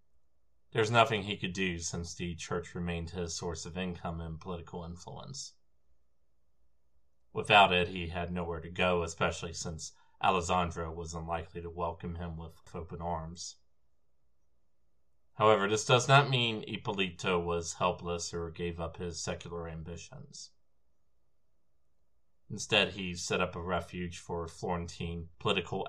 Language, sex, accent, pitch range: English, male, American, 80-90 Hz